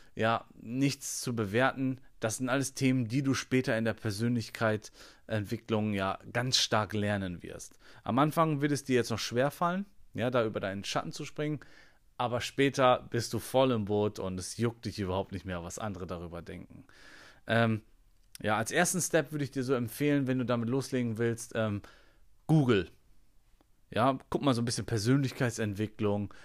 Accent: German